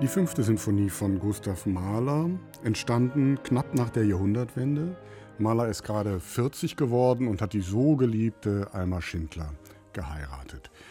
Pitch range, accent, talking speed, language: 105-135 Hz, German, 130 wpm, German